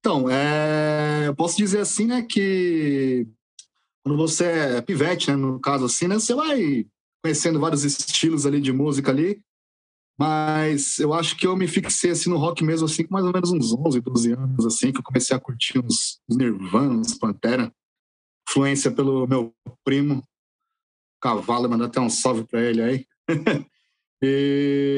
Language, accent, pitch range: Portuguese, Brazilian, 135-175 Hz